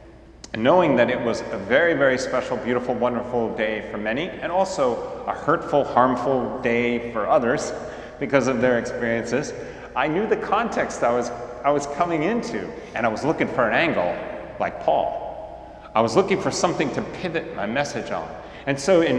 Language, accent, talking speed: English, American, 180 wpm